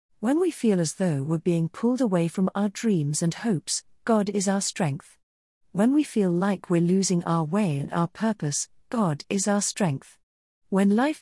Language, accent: English, British